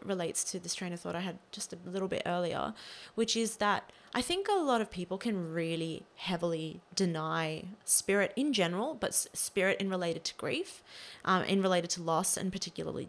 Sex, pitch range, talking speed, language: female, 170-200 Hz, 195 wpm, English